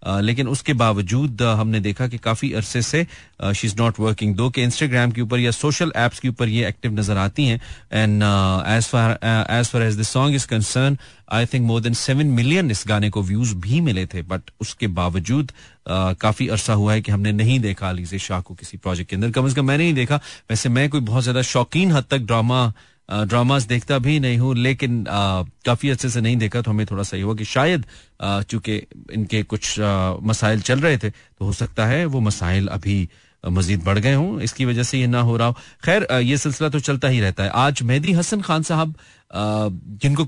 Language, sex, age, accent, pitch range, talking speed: Hindi, male, 30-49, native, 100-130 Hz, 205 wpm